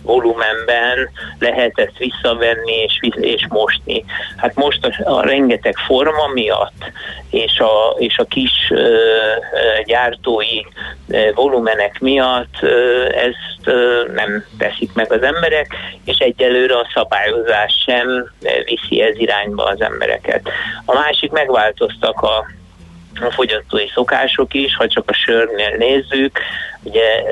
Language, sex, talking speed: Hungarian, male, 125 wpm